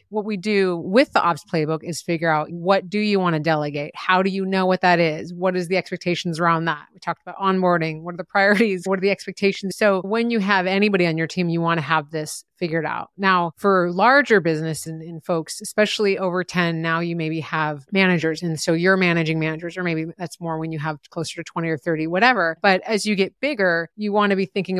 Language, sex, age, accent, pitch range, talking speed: English, female, 30-49, American, 170-205 Hz, 235 wpm